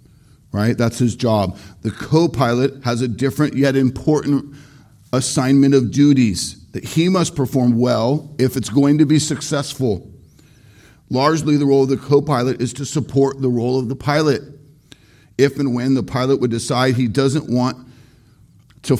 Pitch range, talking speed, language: 105-135 Hz, 160 wpm, English